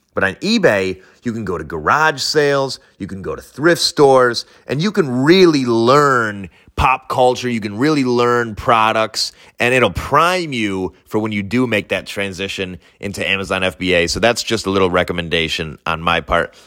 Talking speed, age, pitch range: 180 wpm, 30-49, 95-125 Hz